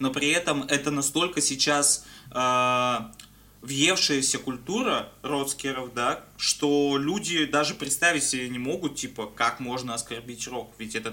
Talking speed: 130 wpm